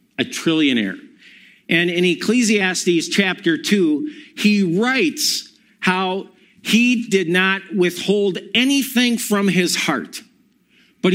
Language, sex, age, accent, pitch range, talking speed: English, male, 50-69, American, 190-245 Hz, 100 wpm